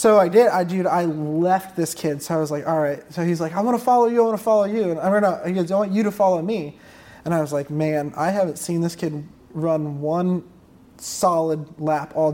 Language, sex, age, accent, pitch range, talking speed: English, male, 20-39, American, 155-190 Hz, 275 wpm